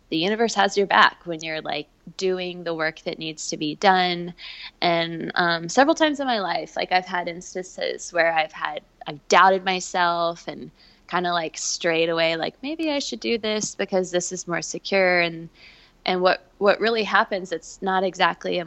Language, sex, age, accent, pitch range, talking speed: English, female, 20-39, American, 165-195 Hz, 195 wpm